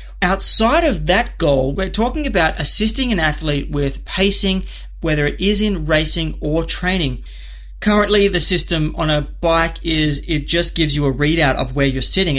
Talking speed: 175 wpm